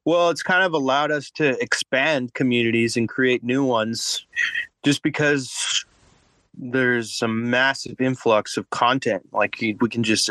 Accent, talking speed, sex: American, 145 wpm, male